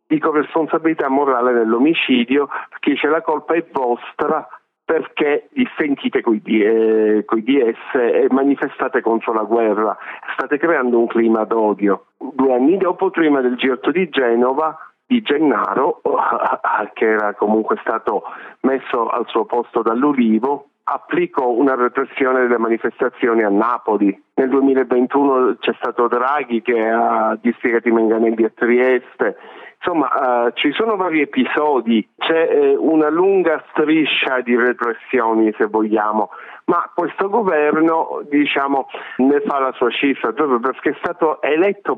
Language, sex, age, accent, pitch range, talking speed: Italian, male, 40-59, native, 115-150 Hz, 130 wpm